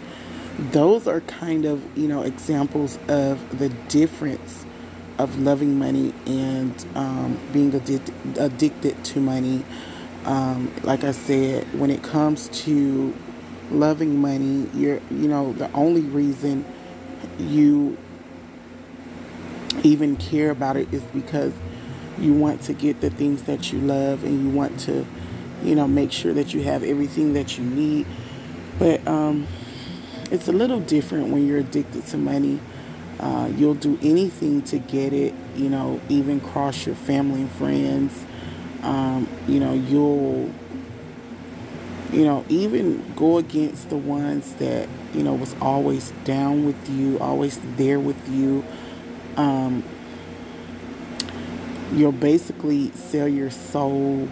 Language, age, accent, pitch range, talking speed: English, 30-49, American, 130-145 Hz, 135 wpm